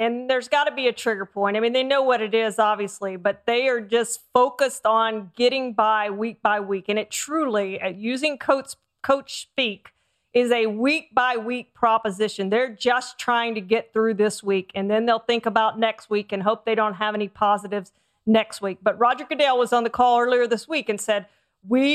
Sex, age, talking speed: female, 40-59, 215 wpm